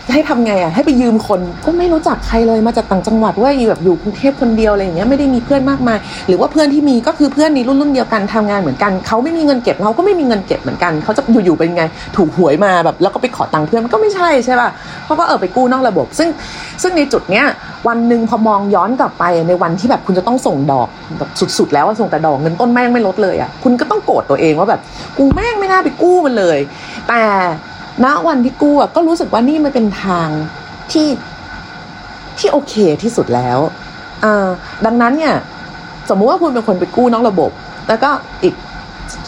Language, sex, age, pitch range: Thai, female, 30-49, 175-260 Hz